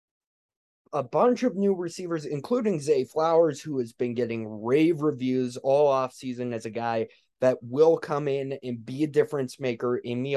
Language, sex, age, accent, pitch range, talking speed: English, male, 20-39, American, 135-175 Hz, 175 wpm